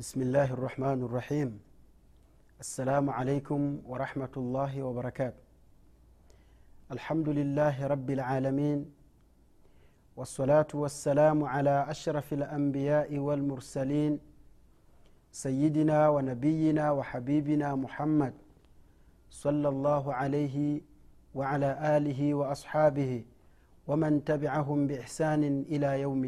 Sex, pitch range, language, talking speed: male, 130-150 Hz, Swahili, 80 wpm